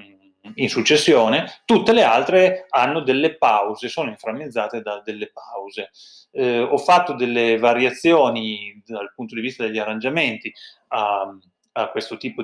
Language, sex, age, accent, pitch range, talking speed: Italian, male, 30-49, native, 110-160 Hz, 135 wpm